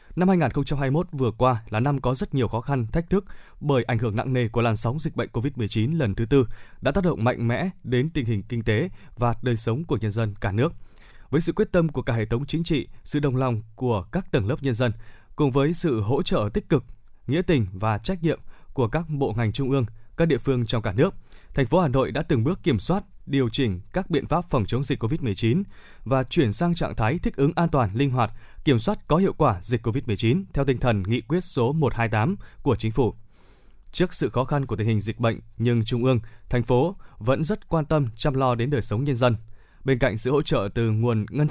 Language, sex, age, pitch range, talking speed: Vietnamese, male, 20-39, 115-155 Hz, 240 wpm